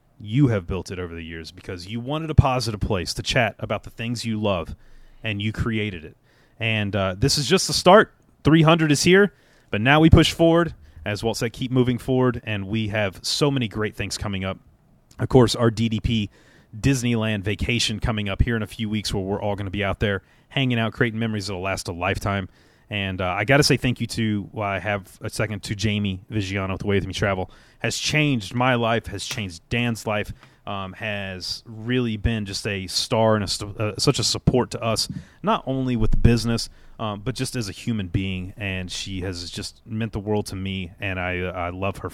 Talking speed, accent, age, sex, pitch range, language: 220 wpm, American, 30-49, male, 100-120 Hz, English